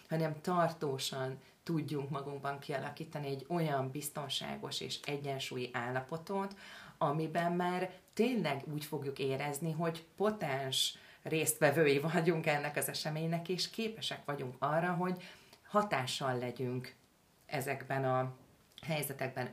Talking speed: 105 wpm